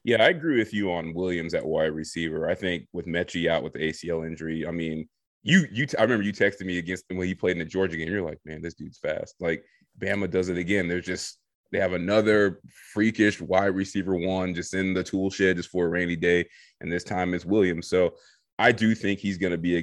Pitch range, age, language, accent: 90-110 Hz, 20-39, English, American